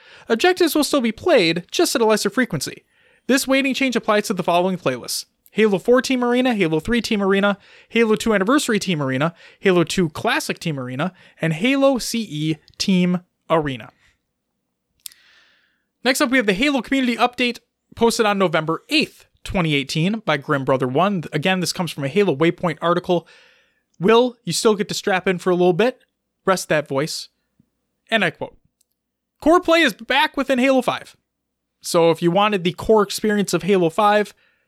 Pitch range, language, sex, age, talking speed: 165-240 Hz, English, male, 20-39, 170 wpm